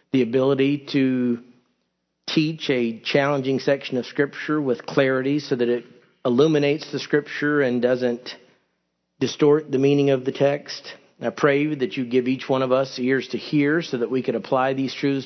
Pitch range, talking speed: 125-150 Hz, 175 wpm